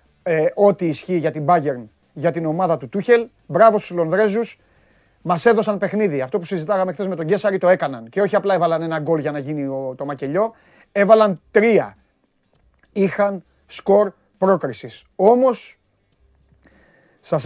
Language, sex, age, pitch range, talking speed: Greek, male, 30-49, 145-200 Hz, 155 wpm